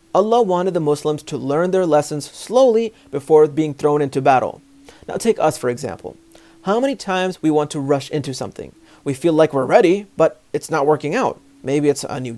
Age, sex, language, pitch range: 30-49, male, English, 145-185 Hz